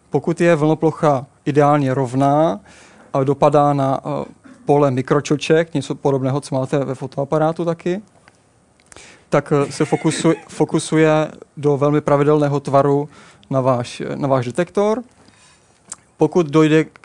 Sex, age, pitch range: male, 30-49, 140-160 Hz